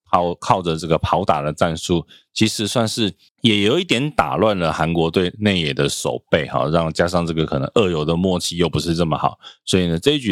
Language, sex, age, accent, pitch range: Chinese, male, 20-39, native, 80-100 Hz